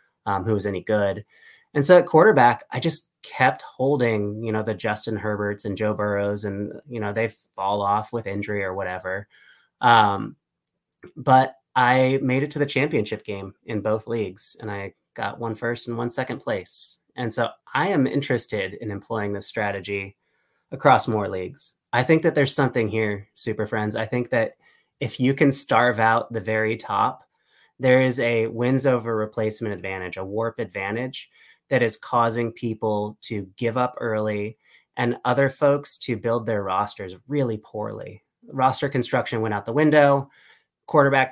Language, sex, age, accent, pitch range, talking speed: English, male, 20-39, American, 105-125 Hz, 170 wpm